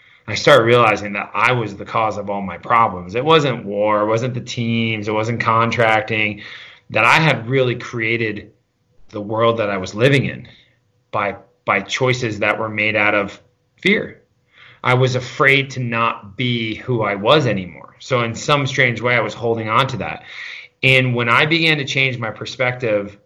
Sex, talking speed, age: male, 185 wpm, 30-49